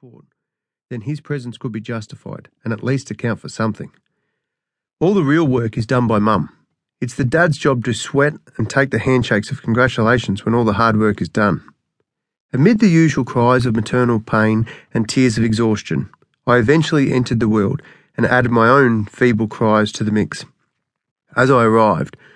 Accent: Australian